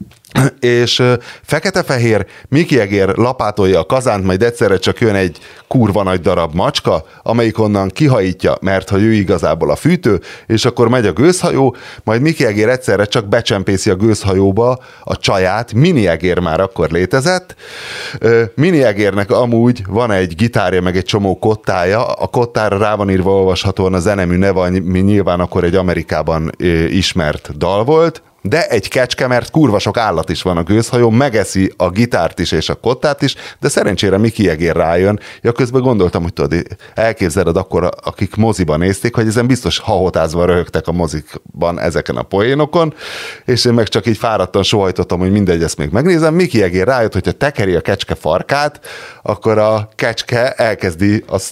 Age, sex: 30-49, male